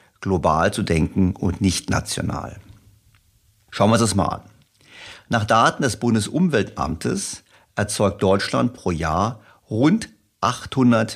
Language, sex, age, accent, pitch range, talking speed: German, male, 50-69, German, 90-115 Hz, 120 wpm